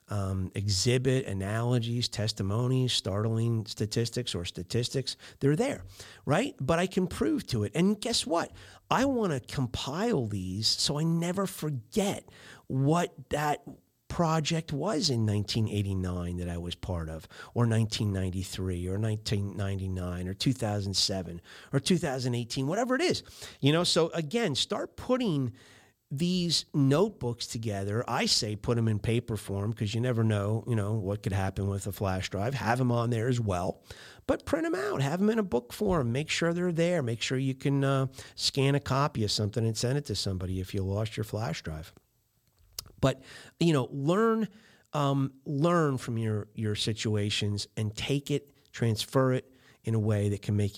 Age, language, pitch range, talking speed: 40-59, English, 105-145 Hz, 170 wpm